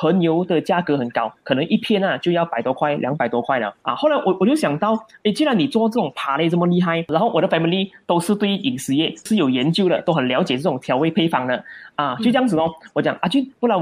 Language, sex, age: Chinese, male, 20-39